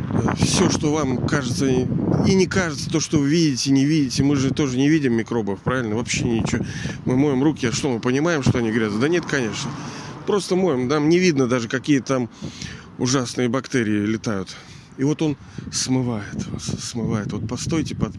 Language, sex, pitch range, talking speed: Russian, male, 115-145 Hz, 180 wpm